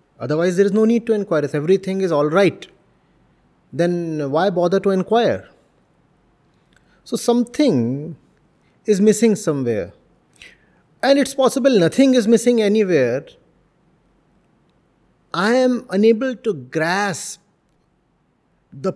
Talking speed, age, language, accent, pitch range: 110 wpm, 30-49, English, Indian, 155-215 Hz